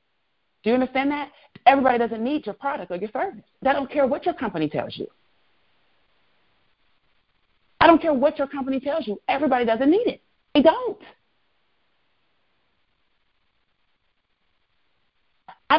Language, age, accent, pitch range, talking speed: English, 40-59, American, 180-265 Hz, 135 wpm